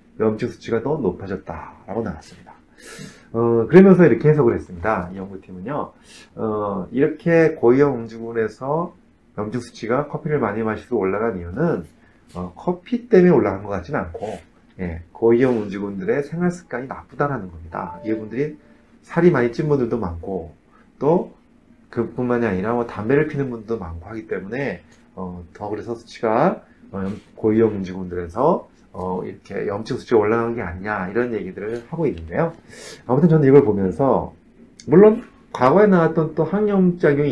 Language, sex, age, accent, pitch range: Korean, male, 30-49, native, 100-155 Hz